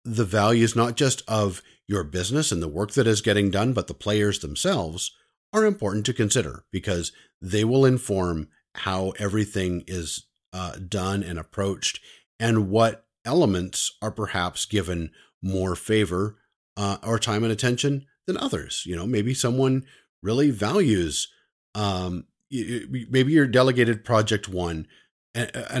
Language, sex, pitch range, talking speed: English, male, 90-115 Hz, 140 wpm